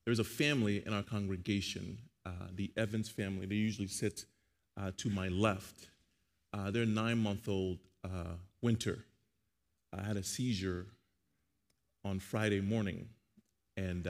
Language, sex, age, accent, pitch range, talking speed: English, male, 30-49, American, 90-100 Hz, 130 wpm